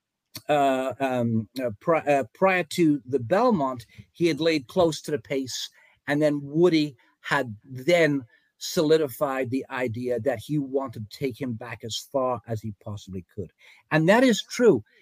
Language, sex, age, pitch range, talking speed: English, male, 50-69, 120-160 Hz, 160 wpm